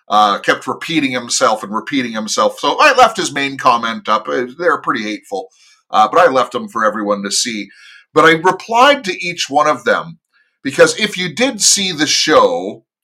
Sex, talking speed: male, 190 wpm